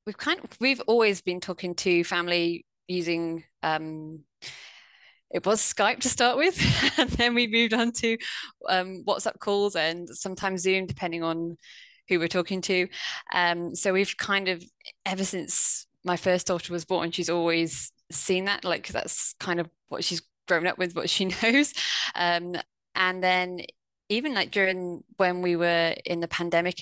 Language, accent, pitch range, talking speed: English, British, 170-210 Hz, 170 wpm